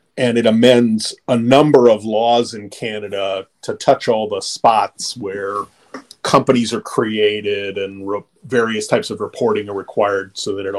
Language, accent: English, American